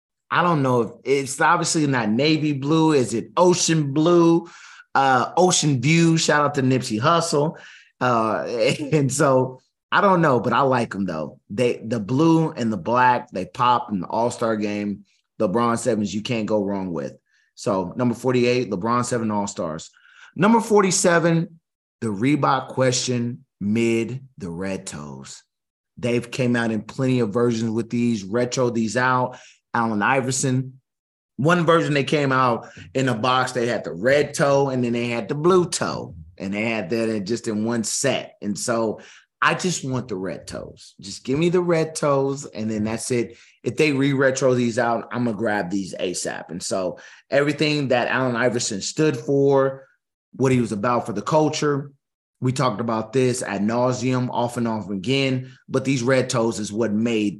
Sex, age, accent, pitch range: male, 30-49, American, 115-145 Hz